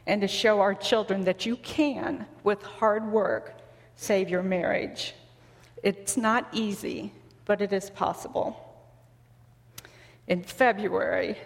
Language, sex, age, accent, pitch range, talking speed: English, female, 40-59, American, 185-230 Hz, 120 wpm